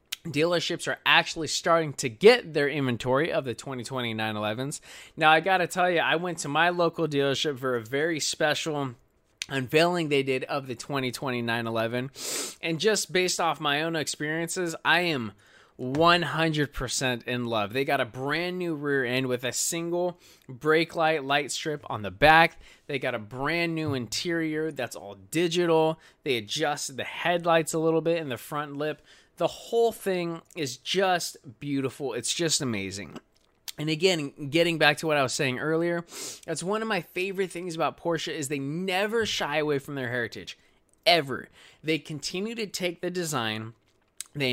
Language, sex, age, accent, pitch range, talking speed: English, male, 20-39, American, 130-170 Hz, 170 wpm